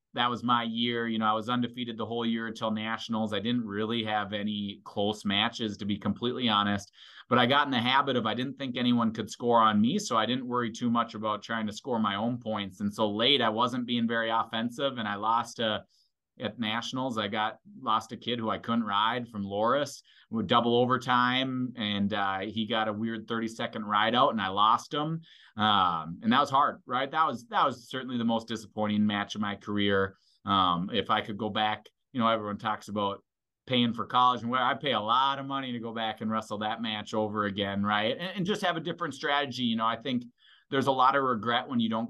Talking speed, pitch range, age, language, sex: 235 wpm, 105-120 Hz, 30-49, English, male